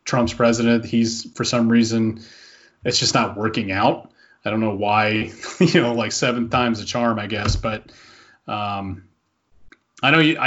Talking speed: 165 wpm